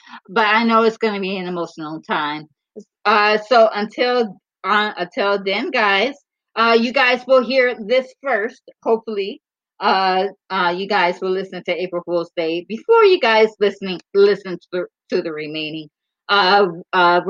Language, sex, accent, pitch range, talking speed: English, female, American, 175-230 Hz, 160 wpm